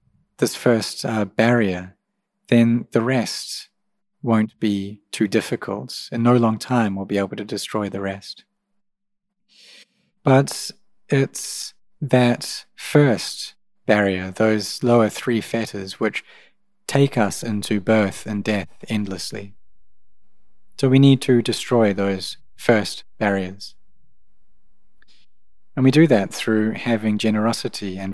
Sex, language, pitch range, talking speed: male, English, 100-130 Hz, 115 wpm